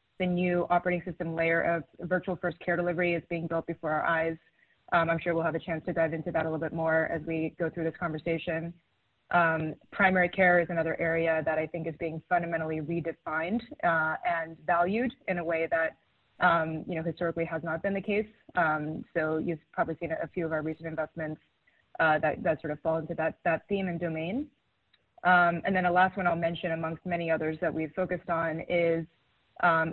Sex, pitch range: female, 160-180 Hz